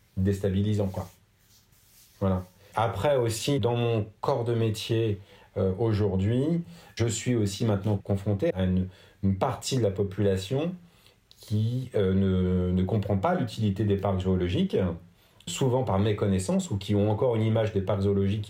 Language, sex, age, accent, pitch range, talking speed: French, male, 40-59, French, 95-110 Hz, 150 wpm